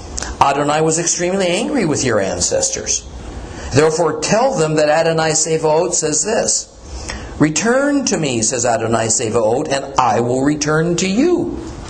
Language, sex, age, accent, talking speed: English, male, 50-69, American, 135 wpm